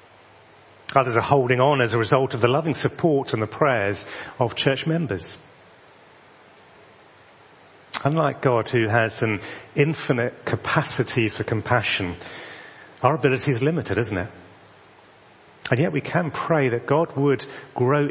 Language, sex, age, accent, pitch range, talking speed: English, male, 40-59, British, 105-145 Hz, 135 wpm